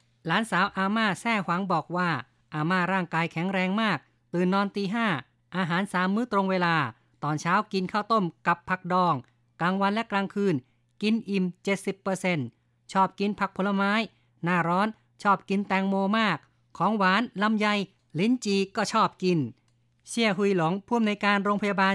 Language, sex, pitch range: Thai, female, 170-200 Hz